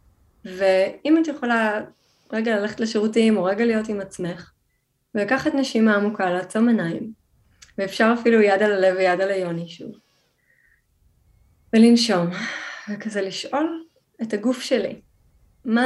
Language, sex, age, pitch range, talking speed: Hebrew, female, 20-39, 190-235 Hz, 120 wpm